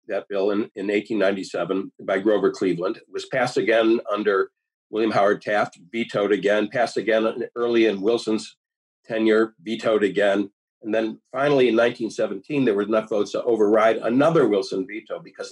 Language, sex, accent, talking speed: English, male, American, 160 wpm